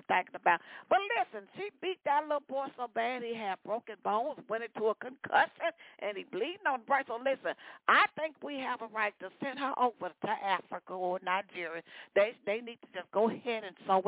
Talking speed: 215 wpm